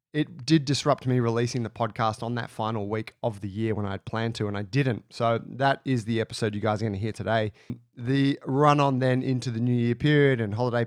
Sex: male